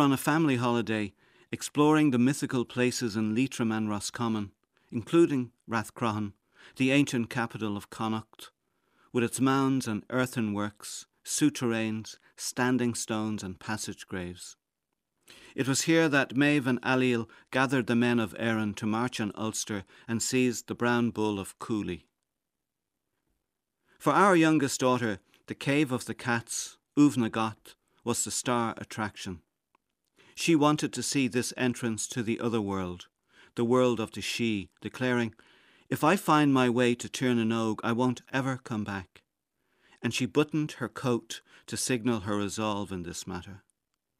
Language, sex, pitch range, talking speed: English, male, 110-130 Hz, 150 wpm